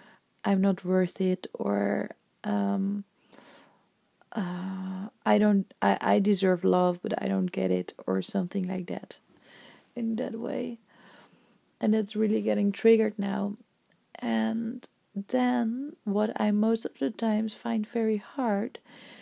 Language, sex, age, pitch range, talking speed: English, female, 30-49, 195-235 Hz, 130 wpm